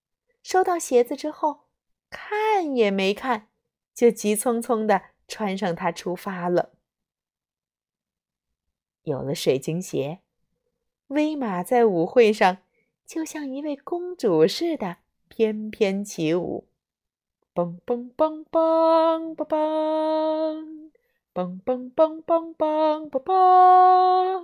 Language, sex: Chinese, female